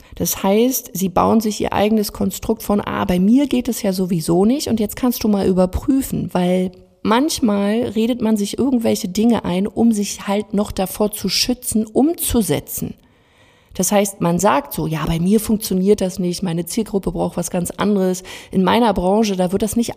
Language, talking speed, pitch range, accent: German, 190 wpm, 180-220 Hz, German